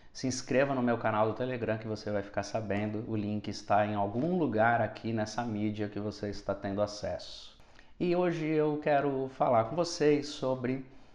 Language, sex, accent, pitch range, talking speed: Portuguese, male, Brazilian, 110-135 Hz, 185 wpm